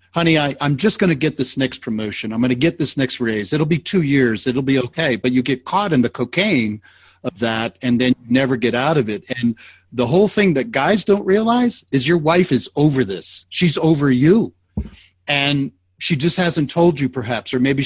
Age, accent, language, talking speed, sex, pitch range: 50-69, American, English, 225 wpm, male, 110-150 Hz